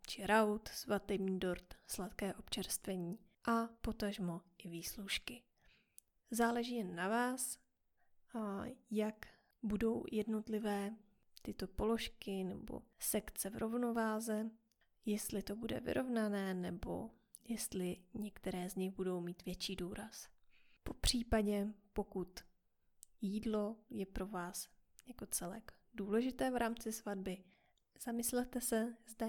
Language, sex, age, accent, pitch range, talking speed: Czech, female, 20-39, native, 200-235 Hz, 105 wpm